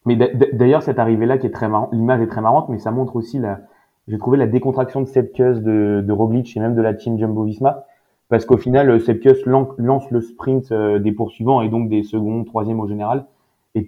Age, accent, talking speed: 20-39, French, 215 wpm